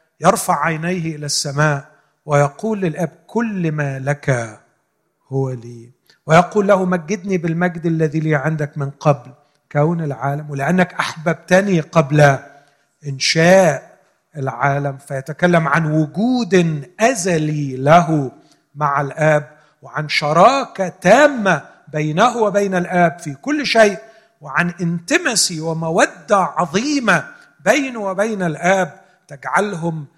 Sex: male